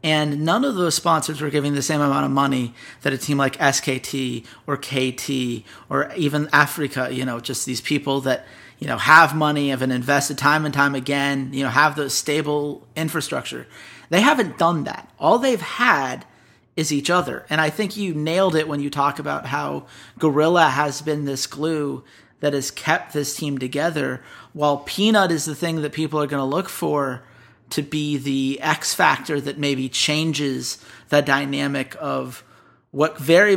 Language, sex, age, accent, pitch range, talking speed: English, male, 30-49, American, 130-155 Hz, 180 wpm